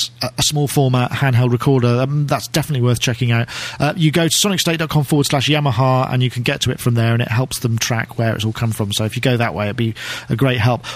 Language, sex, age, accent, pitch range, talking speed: English, male, 40-59, British, 125-150 Hz, 270 wpm